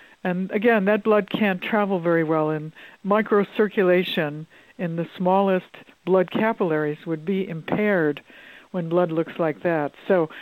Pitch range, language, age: 170-215 Hz, English, 60-79